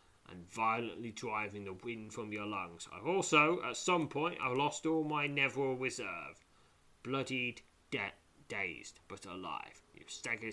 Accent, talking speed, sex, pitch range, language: British, 150 wpm, male, 100-130 Hz, English